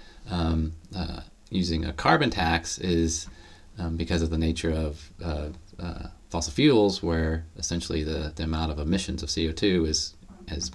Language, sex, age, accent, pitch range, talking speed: English, male, 40-59, American, 80-90 Hz, 155 wpm